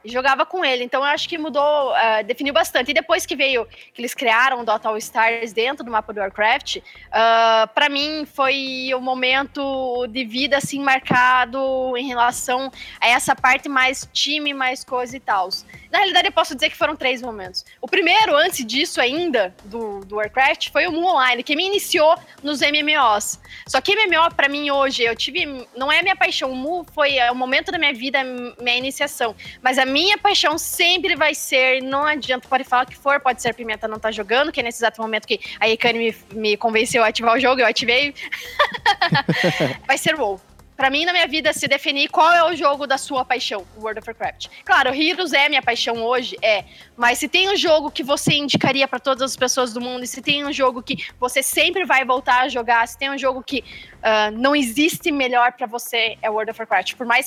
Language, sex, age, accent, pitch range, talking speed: Portuguese, female, 20-39, Brazilian, 240-295 Hz, 215 wpm